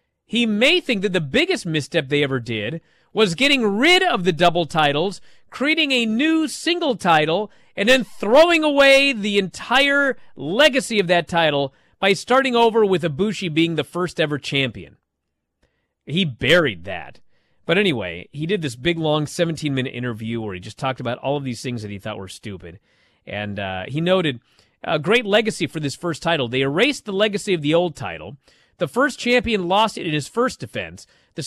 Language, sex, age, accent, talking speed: English, male, 30-49, American, 185 wpm